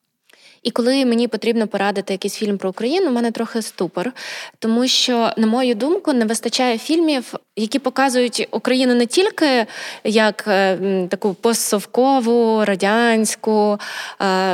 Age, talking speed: 20-39, 130 wpm